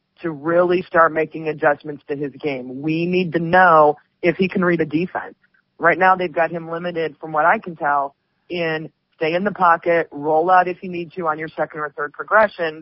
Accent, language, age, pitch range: American, English, 30-49, 150-175 Hz